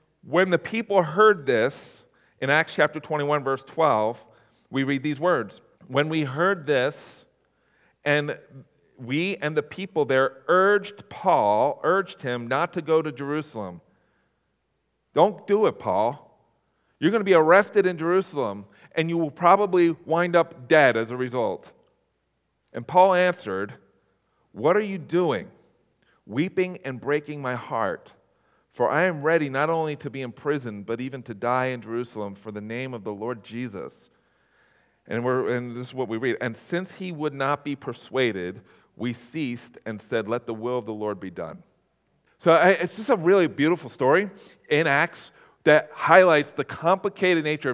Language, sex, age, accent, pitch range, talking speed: English, male, 40-59, American, 125-170 Hz, 165 wpm